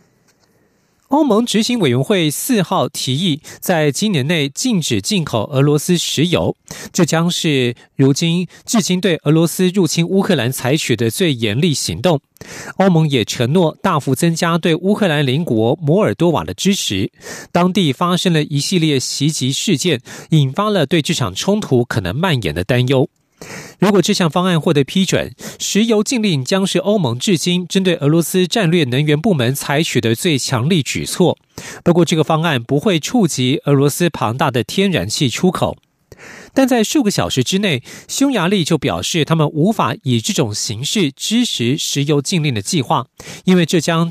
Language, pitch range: Russian, 140-190 Hz